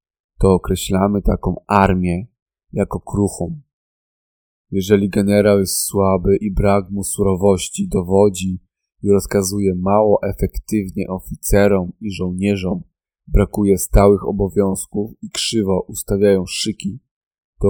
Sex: male